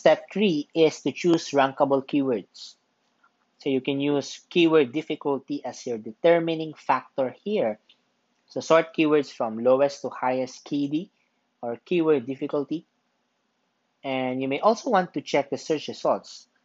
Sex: male